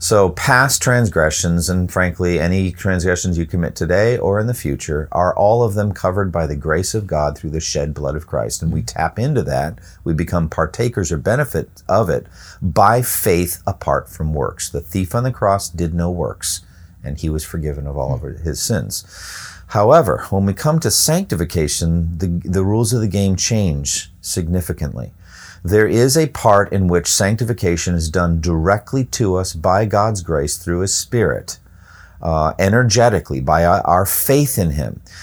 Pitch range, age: 85-100 Hz, 50-69